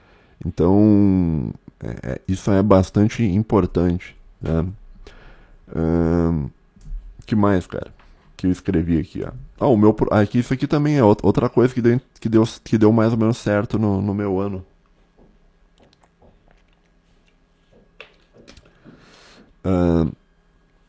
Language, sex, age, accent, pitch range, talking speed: Portuguese, male, 20-39, Brazilian, 90-110 Hz, 125 wpm